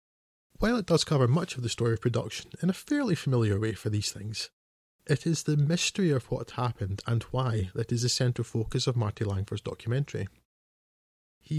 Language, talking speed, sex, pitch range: English, 190 wpm, male, 110-140 Hz